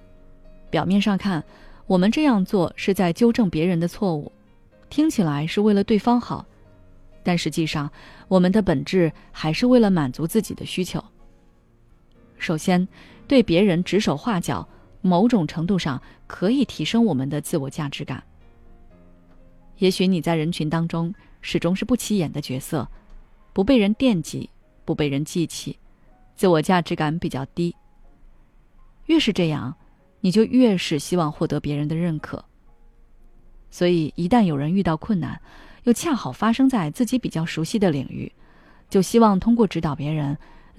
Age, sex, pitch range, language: 20-39, female, 145-200 Hz, Chinese